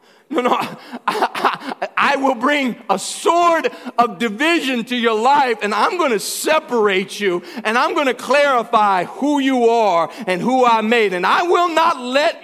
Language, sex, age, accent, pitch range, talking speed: English, male, 40-59, American, 195-255 Hz, 175 wpm